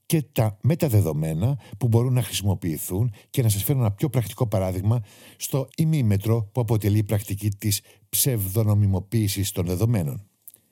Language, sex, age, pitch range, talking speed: Greek, male, 60-79, 100-120 Hz, 140 wpm